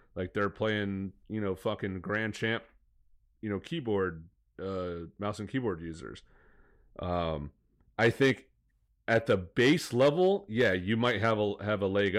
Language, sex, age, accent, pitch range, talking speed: English, male, 30-49, American, 90-105 Hz, 155 wpm